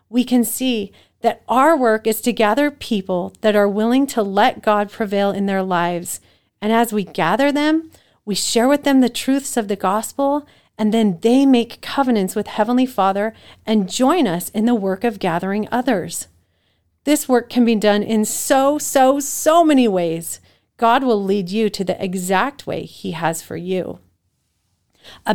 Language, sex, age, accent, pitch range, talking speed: English, female, 40-59, American, 200-255 Hz, 180 wpm